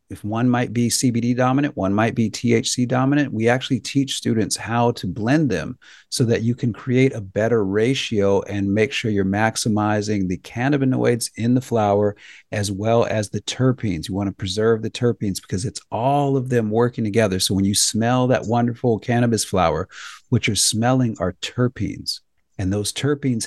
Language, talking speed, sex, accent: English, 180 wpm, male, American